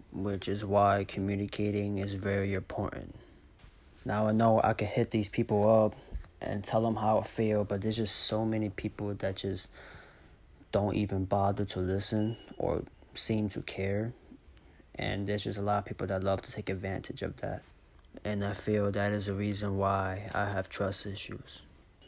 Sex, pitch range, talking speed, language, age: male, 100-115 Hz, 175 wpm, English, 20-39